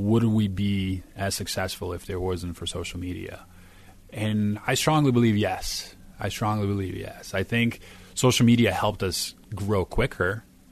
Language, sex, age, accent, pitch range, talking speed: English, male, 30-49, American, 90-105 Hz, 155 wpm